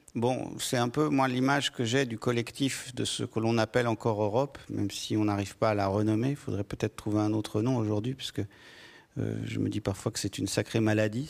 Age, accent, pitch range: 50-69, French, 110-130 Hz